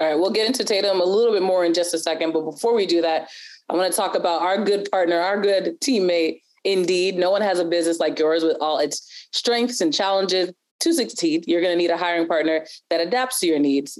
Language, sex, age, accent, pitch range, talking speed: English, female, 20-39, American, 160-210 Hz, 250 wpm